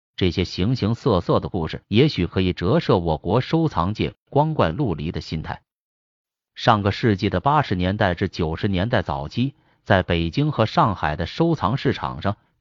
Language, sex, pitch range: Chinese, male, 90-130 Hz